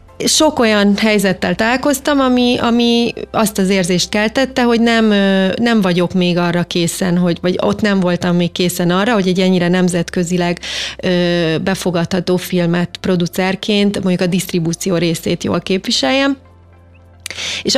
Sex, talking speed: female, 130 wpm